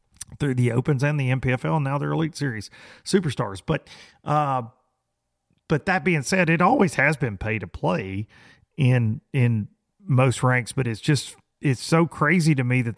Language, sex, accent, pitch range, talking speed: English, male, American, 110-150 Hz, 175 wpm